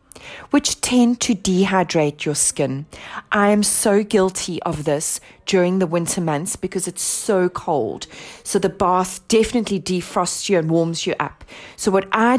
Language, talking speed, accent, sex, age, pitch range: English, 160 wpm, British, female, 30-49, 170-230 Hz